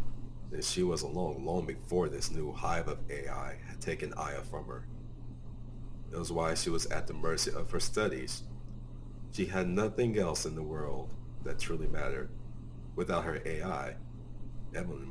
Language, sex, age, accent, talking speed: English, male, 40-59, American, 165 wpm